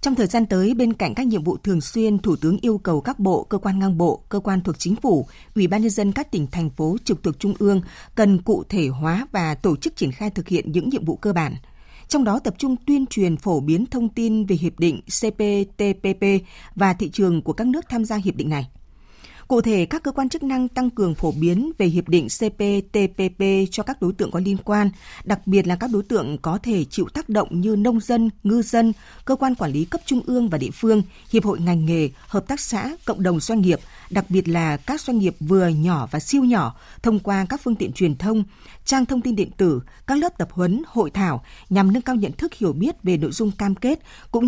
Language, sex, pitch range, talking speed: Vietnamese, female, 175-225 Hz, 245 wpm